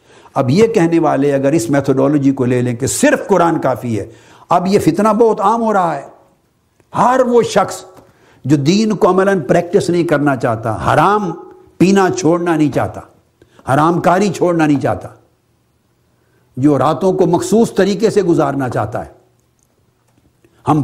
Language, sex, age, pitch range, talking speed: Urdu, male, 60-79, 140-200 Hz, 155 wpm